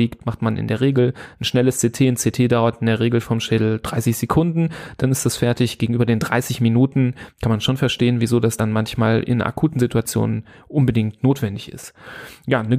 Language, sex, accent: German, male, German